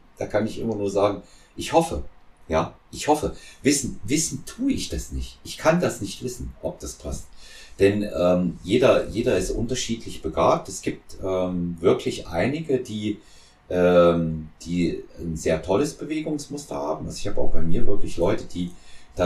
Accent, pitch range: German, 85-115 Hz